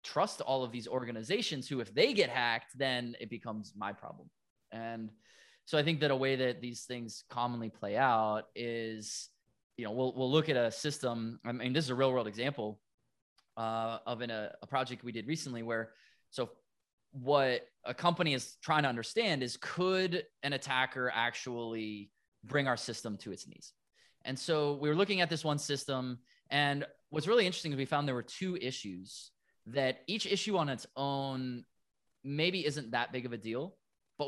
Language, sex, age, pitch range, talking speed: English, male, 20-39, 120-145 Hz, 190 wpm